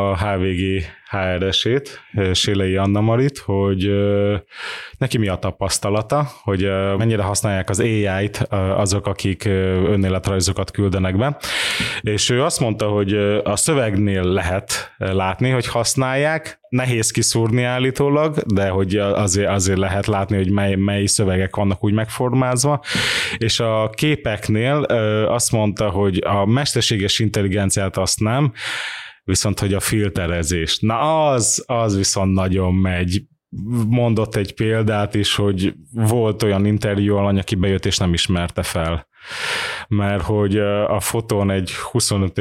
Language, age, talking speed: Hungarian, 20-39, 125 wpm